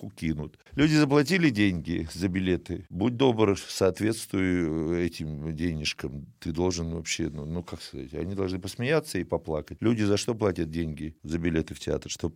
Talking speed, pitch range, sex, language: 160 wpm, 80-110 Hz, male, Russian